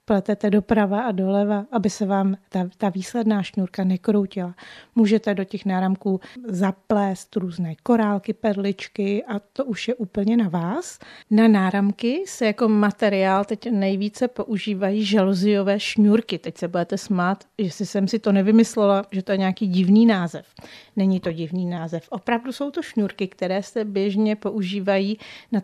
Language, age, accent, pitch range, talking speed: Czech, 40-59, native, 190-220 Hz, 155 wpm